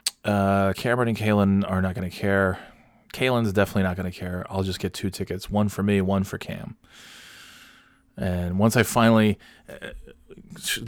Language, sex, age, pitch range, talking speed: English, male, 20-39, 95-120 Hz, 170 wpm